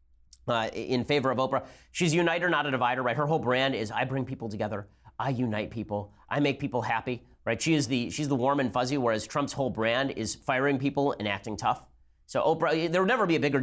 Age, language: 30-49, English